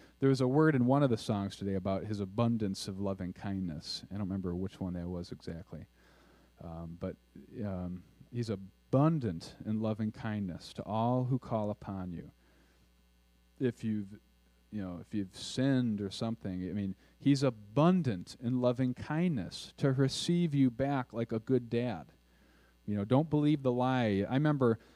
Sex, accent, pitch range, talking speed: male, American, 95-130 Hz, 170 wpm